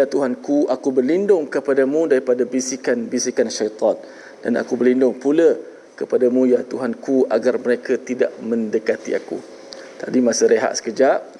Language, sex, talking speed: Malayalam, male, 135 wpm